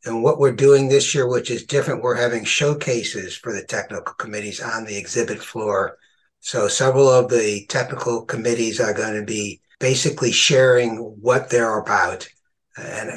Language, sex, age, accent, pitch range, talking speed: English, male, 60-79, American, 115-130 Hz, 165 wpm